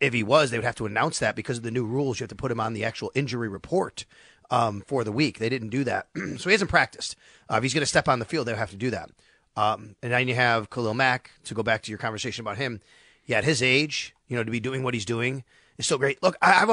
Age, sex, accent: 30-49, male, American